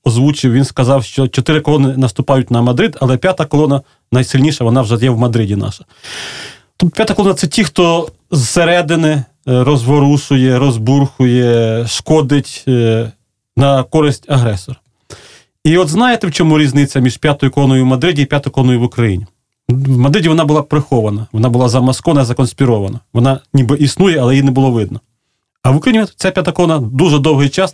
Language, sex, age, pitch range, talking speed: Russian, male, 30-49, 125-155 Hz, 160 wpm